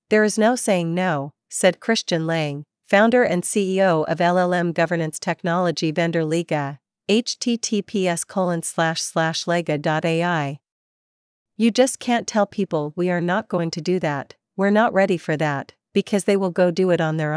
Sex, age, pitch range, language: female, 50-69, 165-200 Hz, Vietnamese